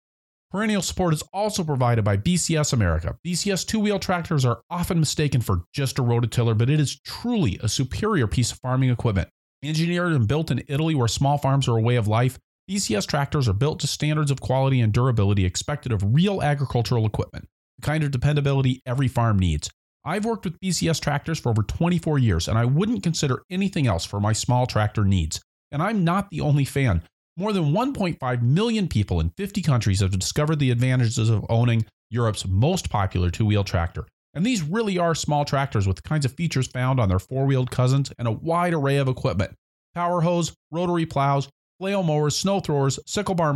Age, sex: 40-59, male